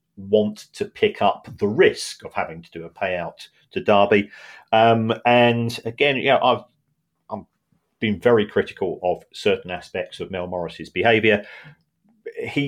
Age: 40-59